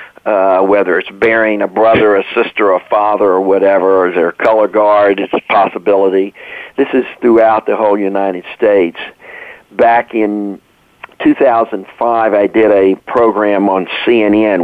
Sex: male